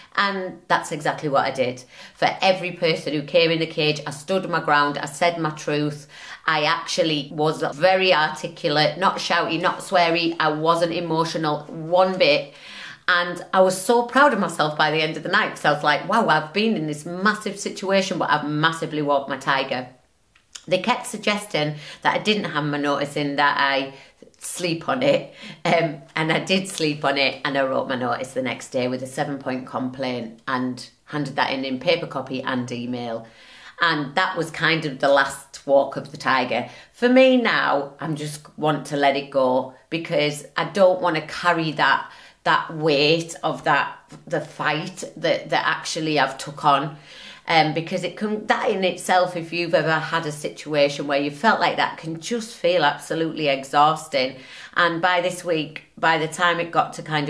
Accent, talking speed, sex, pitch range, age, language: British, 195 wpm, female, 145-180 Hz, 30-49, English